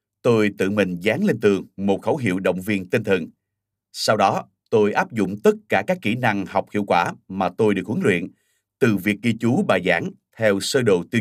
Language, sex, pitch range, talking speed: Vietnamese, male, 100-120 Hz, 220 wpm